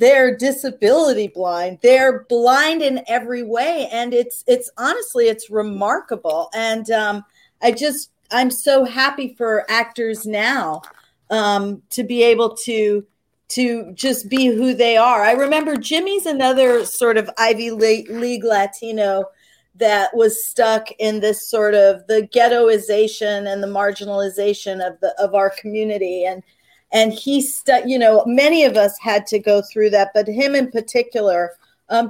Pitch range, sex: 205-255 Hz, female